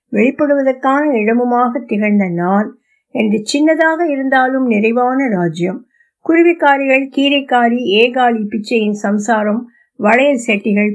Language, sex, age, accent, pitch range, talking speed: Tamil, female, 60-79, native, 205-270 Hz, 90 wpm